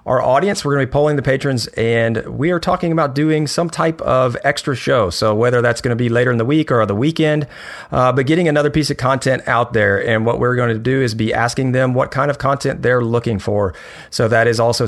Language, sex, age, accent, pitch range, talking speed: English, male, 40-59, American, 110-135 Hz, 255 wpm